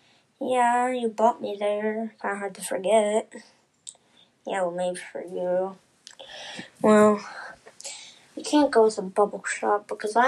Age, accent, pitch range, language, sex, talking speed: 20-39, American, 200-235 Hz, English, female, 145 wpm